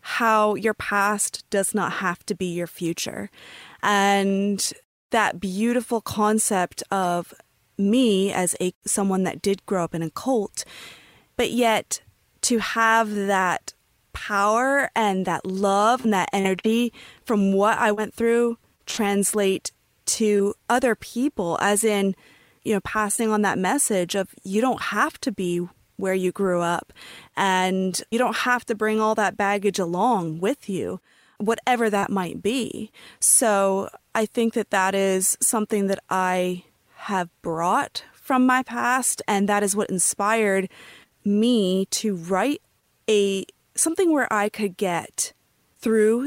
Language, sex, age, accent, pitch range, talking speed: English, female, 20-39, American, 190-225 Hz, 145 wpm